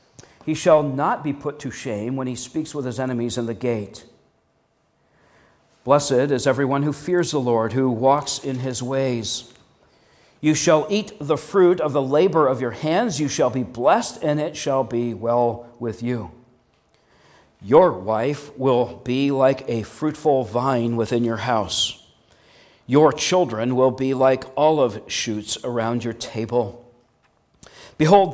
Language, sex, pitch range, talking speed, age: English, male, 120-155 Hz, 150 wpm, 50-69